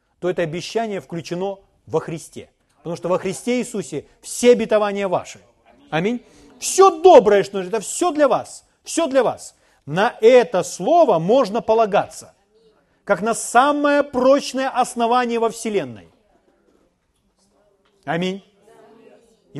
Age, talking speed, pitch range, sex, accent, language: 40-59, 120 wpm, 200-285 Hz, male, native, Ukrainian